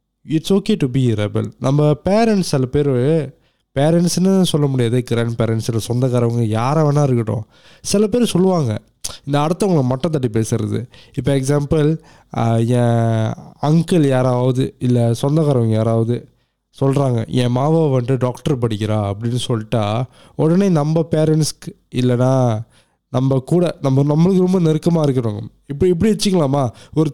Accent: native